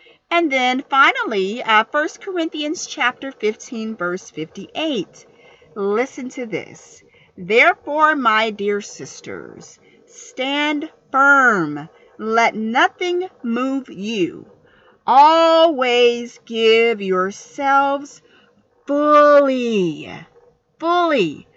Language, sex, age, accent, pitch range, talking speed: English, female, 50-69, American, 210-315 Hz, 80 wpm